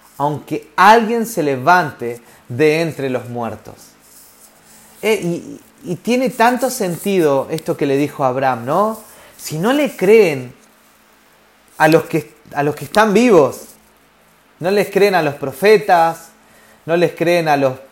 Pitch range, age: 165-230 Hz, 30-49